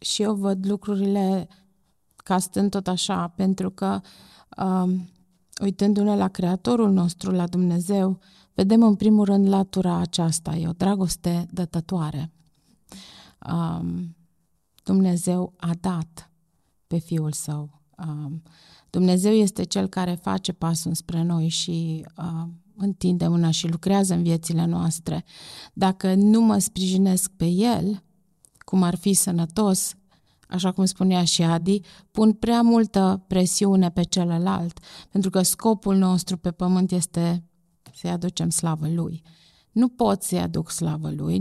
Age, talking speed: 30-49, 130 wpm